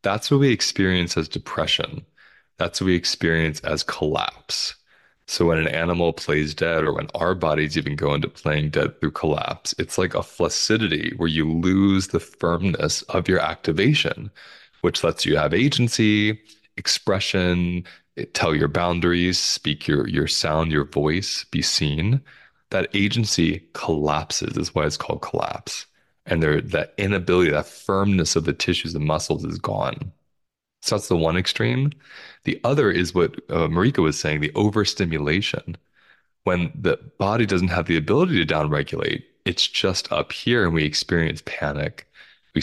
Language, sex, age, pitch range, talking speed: English, male, 20-39, 80-95 Hz, 155 wpm